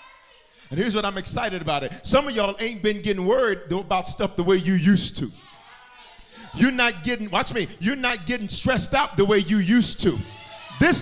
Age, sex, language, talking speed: 40-59, male, English, 200 wpm